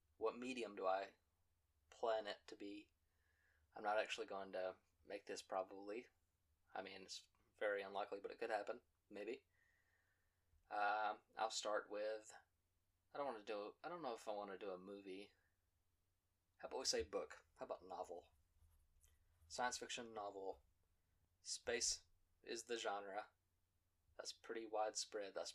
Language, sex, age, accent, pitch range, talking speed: English, male, 20-39, American, 85-115 Hz, 150 wpm